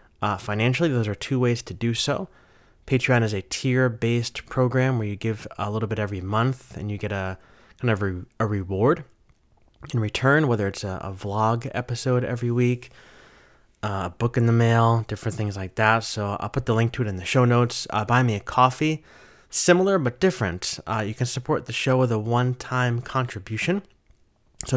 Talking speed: 200 wpm